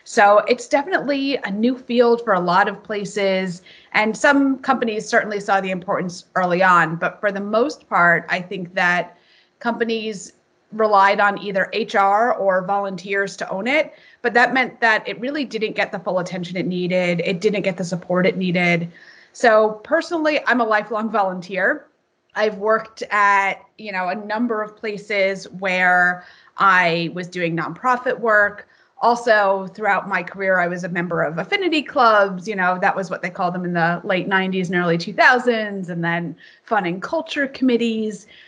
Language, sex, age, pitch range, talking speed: English, female, 30-49, 185-225 Hz, 175 wpm